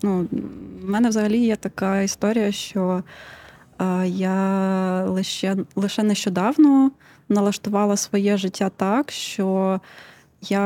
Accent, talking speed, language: native, 105 wpm, Ukrainian